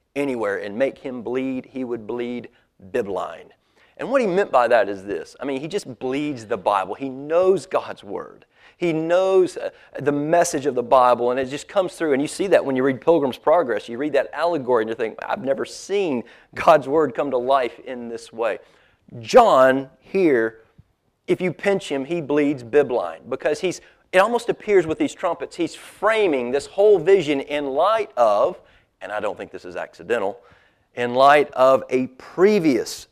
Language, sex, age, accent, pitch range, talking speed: English, male, 40-59, American, 135-195 Hz, 190 wpm